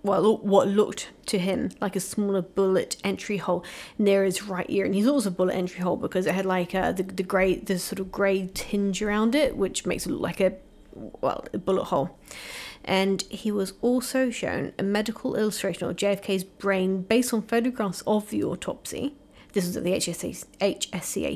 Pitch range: 185-220 Hz